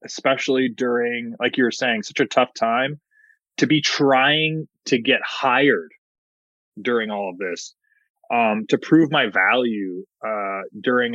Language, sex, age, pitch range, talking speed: English, male, 20-39, 115-140 Hz, 145 wpm